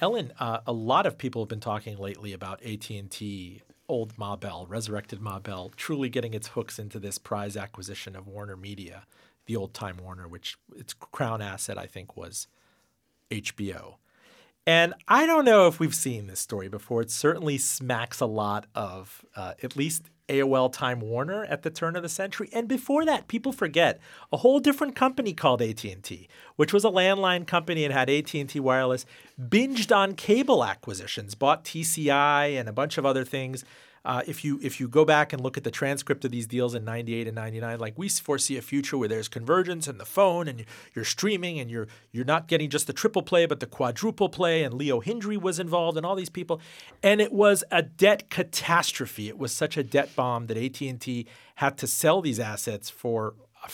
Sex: male